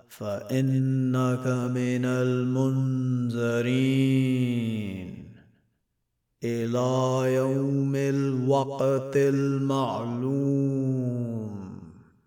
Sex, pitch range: male, 125-135 Hz